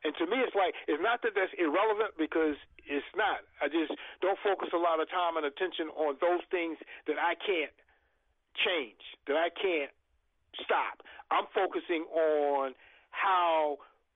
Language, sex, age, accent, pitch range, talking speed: English, male, 50-69, American, 145-185 Hz, 160 wpm